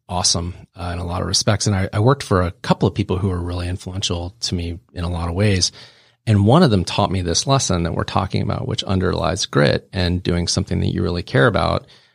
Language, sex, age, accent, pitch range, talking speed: English, male, 30-49, American, 90-105 Hz, 245 wpm